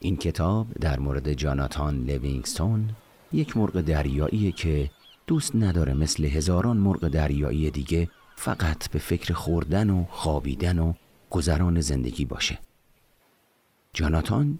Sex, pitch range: male, 75-90 Hz